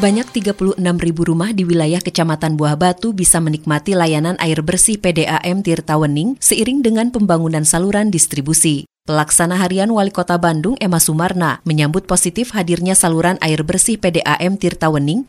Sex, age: female, 20-39